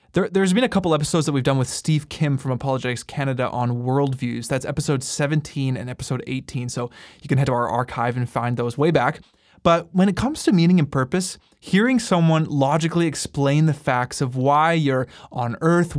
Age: 20-39